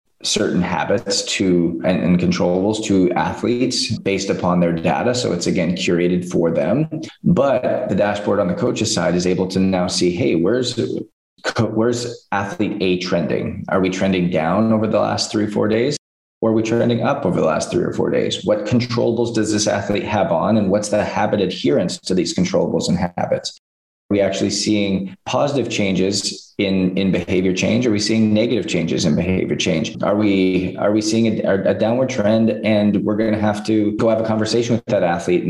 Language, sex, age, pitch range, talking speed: English, male, 20-39, 95-110 Hz, 195 wpm